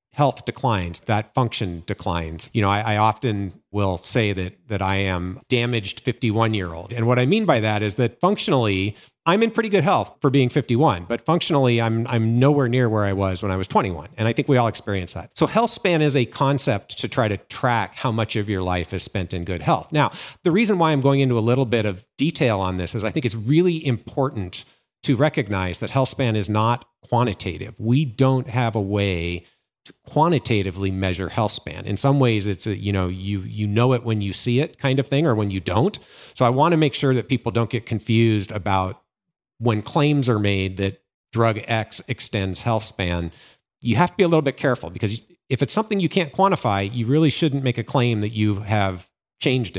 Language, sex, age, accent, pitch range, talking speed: English, male, 40-59, American, 100-140 Hz, 220 wpm